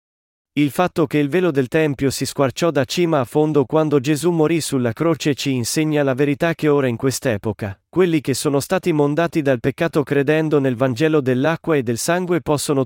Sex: male